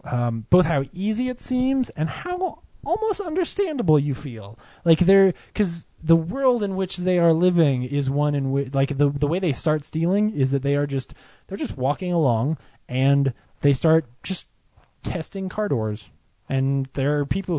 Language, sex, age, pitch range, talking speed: English, male, 20-39, 120-155 Hz, 180 wpm